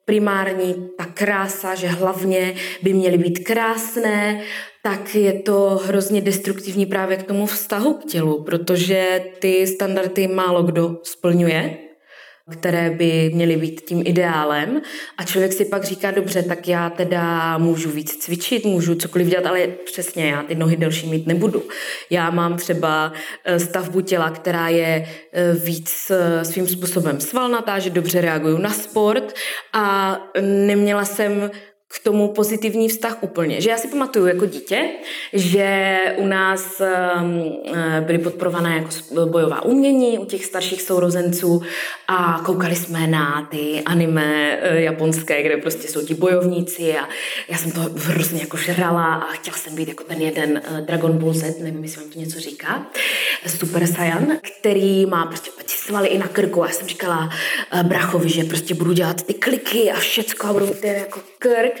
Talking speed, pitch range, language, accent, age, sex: 155 wpm, 165-195 Hz, Czech, native, 20-39, female